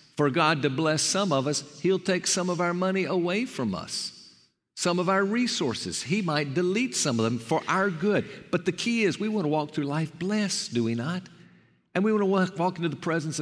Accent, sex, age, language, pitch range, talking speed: American, male, 50-69, English, 110-170 Hz, 235 wpm